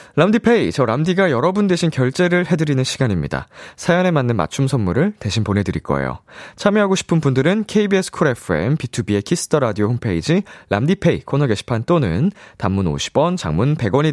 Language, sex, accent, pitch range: Korean, male, native, 105-175 Hz